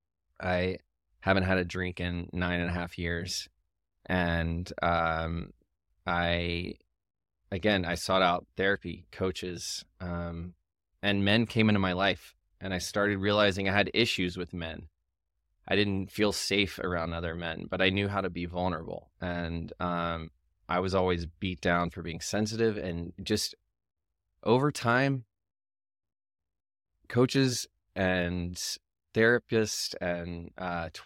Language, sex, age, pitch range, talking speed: English, male, 20-39, 85-100 Hz, 135 wpm